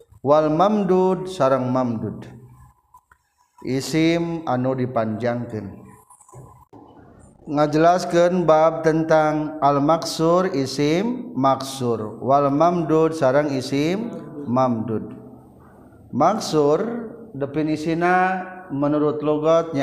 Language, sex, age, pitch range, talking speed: Indonesian, male, 50-69, 130-170 Hz, 70 wpm